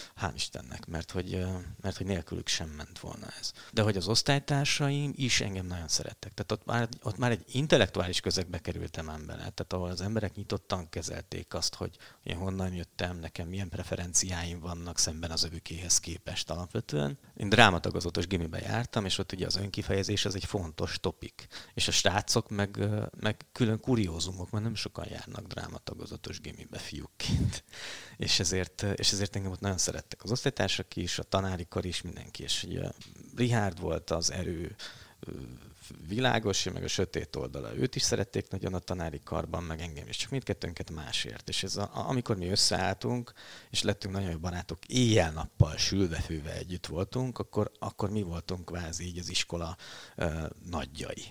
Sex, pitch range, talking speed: male, 85-110 Hz, 165 wpm